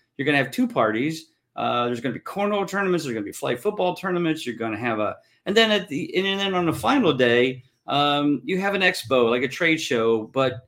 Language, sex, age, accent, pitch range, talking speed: English, male, 40-59, American, 125-165 Hz, 255 wpm